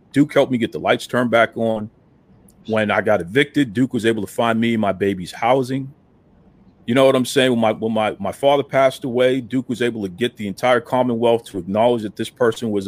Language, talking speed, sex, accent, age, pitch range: English, 235 wpm, male, American, 40-59, 120-185 Hz